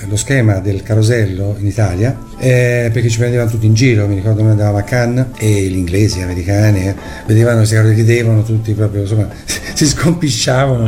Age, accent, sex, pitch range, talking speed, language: 50-69, native, male, 110-140 Hz, 180 wpm, Italian